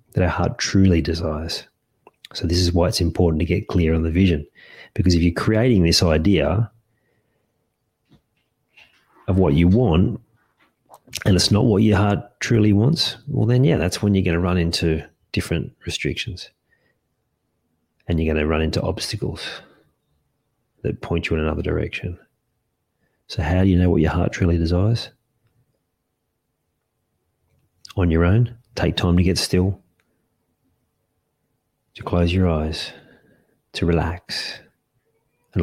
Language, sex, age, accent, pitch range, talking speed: English, male, 40-59, Australian, 80-95 Hz, 145 wpm